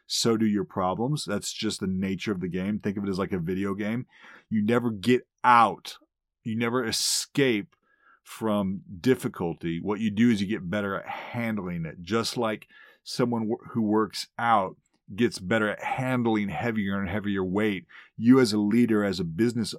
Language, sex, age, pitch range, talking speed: English, male, 30-49, 100-125 Hz, 180 wpm